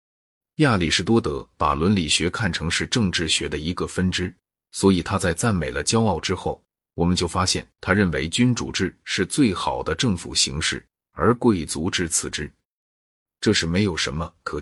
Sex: male